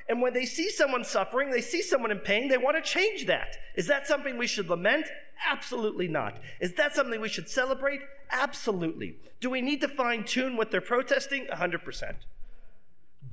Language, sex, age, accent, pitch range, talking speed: English, male, 40-59, American, 185-265 Hz, 185 wpm